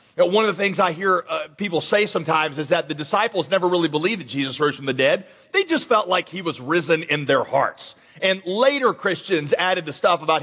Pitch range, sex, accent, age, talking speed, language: 165-200 Hz, male, American, 40-59, 230 wpm, English